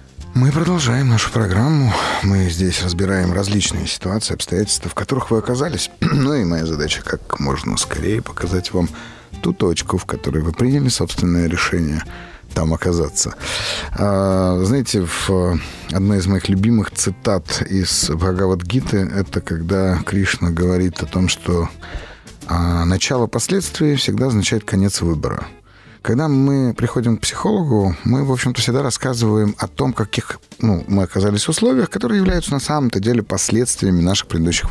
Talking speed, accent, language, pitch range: 140 wpm, native, Russian, 90-125 Hz